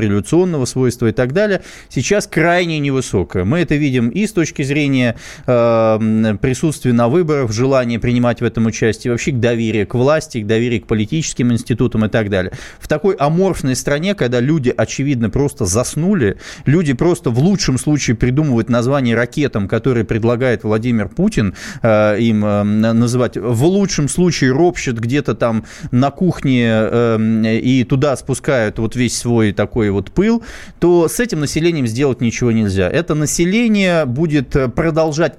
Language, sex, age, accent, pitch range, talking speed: Russian, male, 20-39, native, 120-165 Hz, 155 wpm